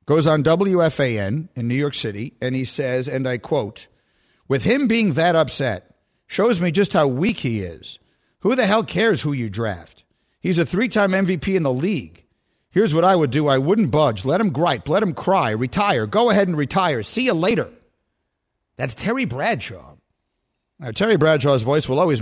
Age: 50-69